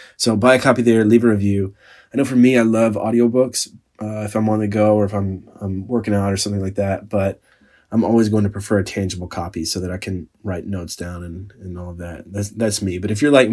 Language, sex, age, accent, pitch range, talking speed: English, male, 20-39, American, 95-105 Hz, 255 wpm